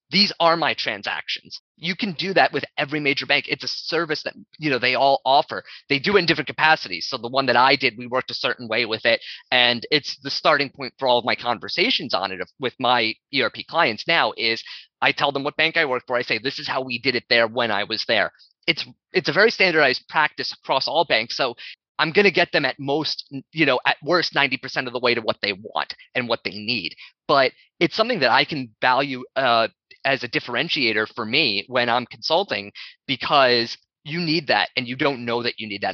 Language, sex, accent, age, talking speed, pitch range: English, male, American, 30-49, 235 wpm, 120-145 Hz